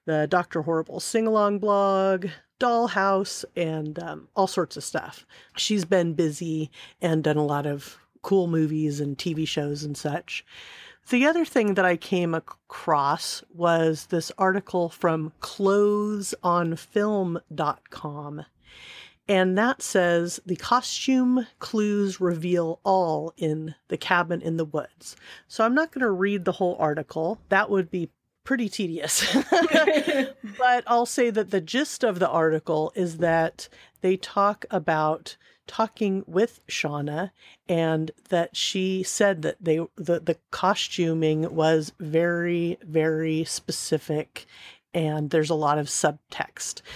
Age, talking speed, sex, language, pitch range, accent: 40-59, 130 wpm, female, English, 160-200 Hz, American